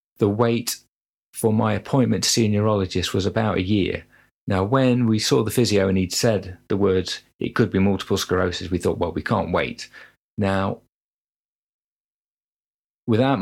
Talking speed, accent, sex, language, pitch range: 165 wpm, British, male, English, 95-115 Hz